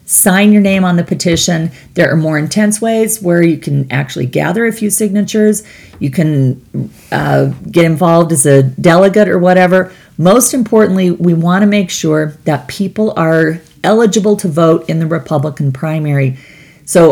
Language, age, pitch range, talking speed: English, 40-59, 145-185 Hz, 165 wpm